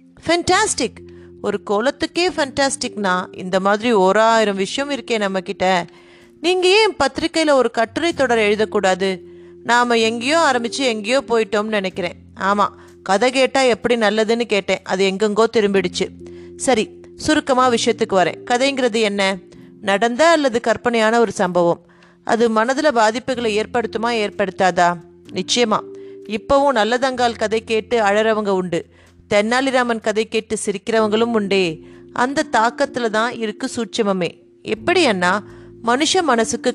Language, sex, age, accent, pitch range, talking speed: Tamil, female, 30-49, native, 195-245 Hz, 110 wpm